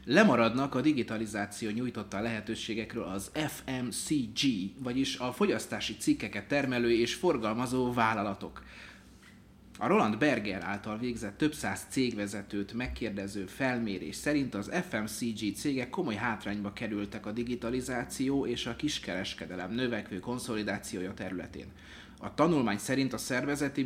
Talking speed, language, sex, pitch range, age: 115 wpm, Hungarian, male, 105-130 Hz, 30-49